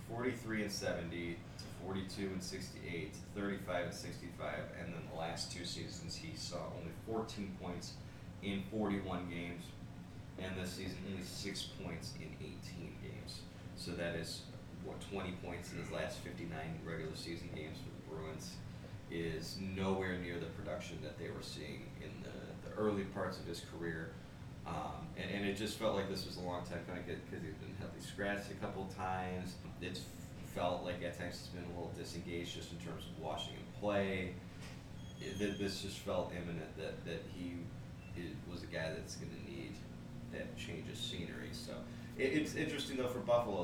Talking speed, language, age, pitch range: 180 wpm, English, 30-49, 85-100 Hz